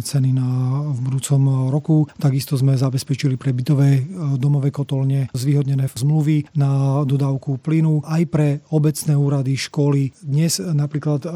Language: Slovak